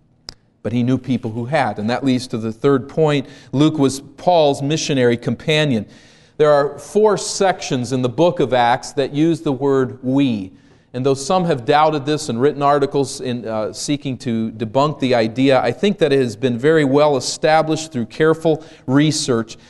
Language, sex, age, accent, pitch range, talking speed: English, male, 40-59, American, 125-150 Hz, 185 wpm